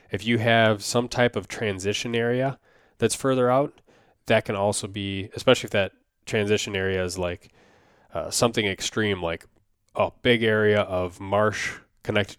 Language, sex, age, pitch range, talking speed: English, male, 20-39, 100-115 Hz, 155 wpm